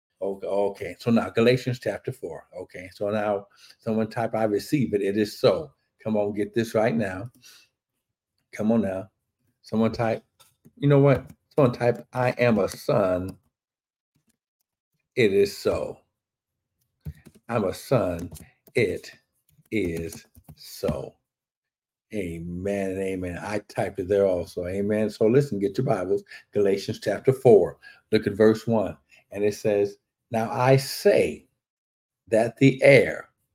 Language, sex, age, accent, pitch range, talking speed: English, male, 50-69, American, 105-125 Hz, 135 wpm